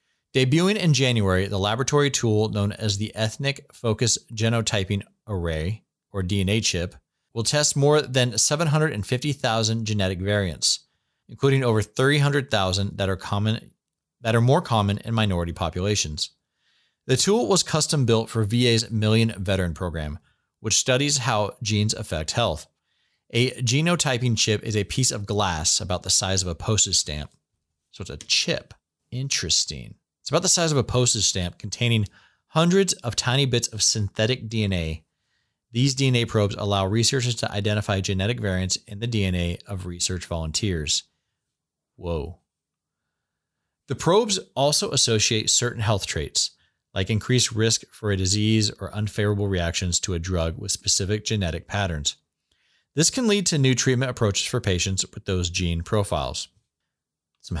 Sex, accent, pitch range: male, American, 95-125 Hz